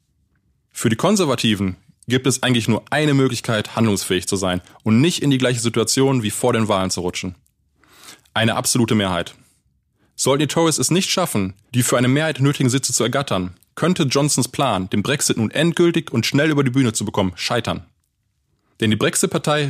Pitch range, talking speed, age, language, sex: 110-145 Hz, 180 wpm, 20-39, German, male